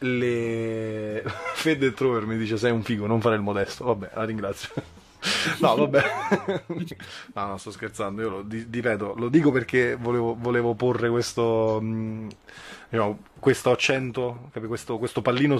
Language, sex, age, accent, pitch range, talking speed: Italian, male, 20-39, native, 105-120 Hz, 145 wpm